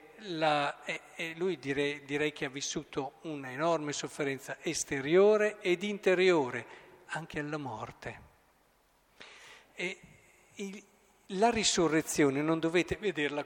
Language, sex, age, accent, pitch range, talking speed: Italian, male, 50-69, native, 150-200 Hz, 105 wpm